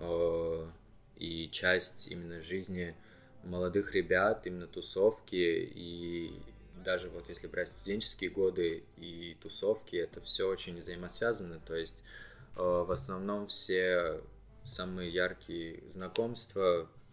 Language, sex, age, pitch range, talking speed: Russian, male, 20-39, 85-105 Hz, 100 wpm